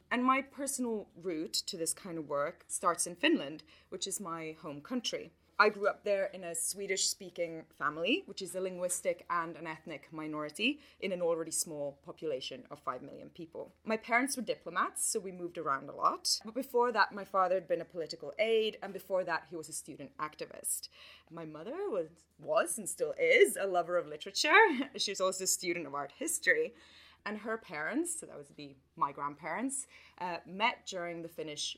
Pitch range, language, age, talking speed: 160-235 Hz, English, 20-39, 195 wpm